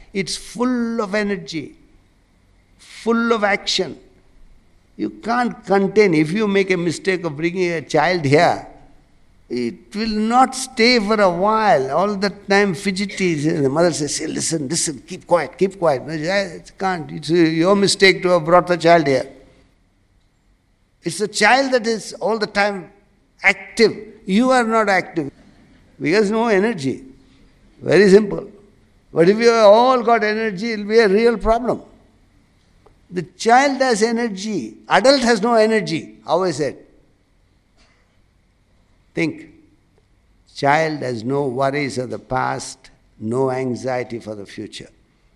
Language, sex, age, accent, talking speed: English, male, 60-79, Indian, 135 wpm